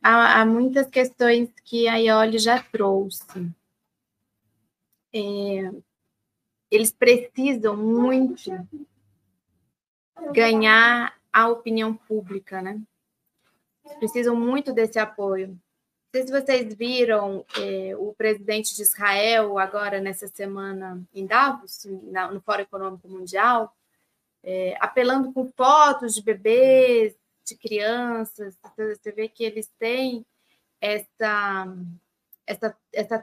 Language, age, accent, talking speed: Portuguese, 20-39, Brazilian, 100 wpm